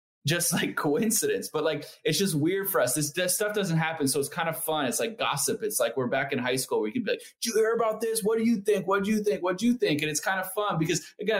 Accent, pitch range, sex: American, 120-185 Hz, male